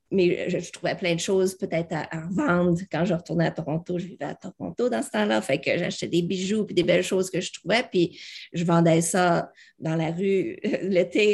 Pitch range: 170-190 Hz